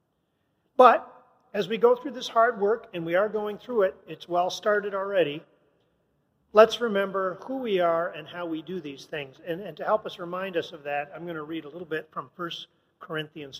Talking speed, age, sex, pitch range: 210 wpm, 40-59, male, 160-210 Hz